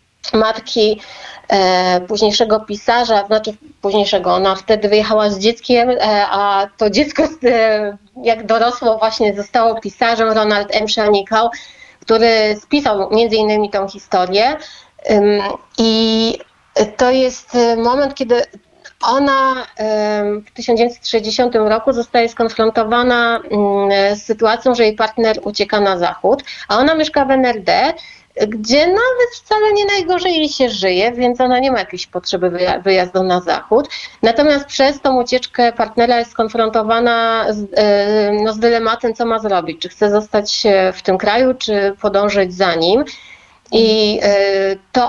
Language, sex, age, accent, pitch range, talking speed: Polish, female, 30-49, native, 205-245 Hz, 135 wpm